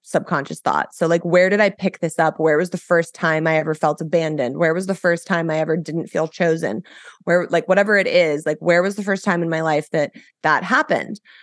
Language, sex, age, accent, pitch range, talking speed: English, female, 20-39, American, 155-180 Hz, 240 wpm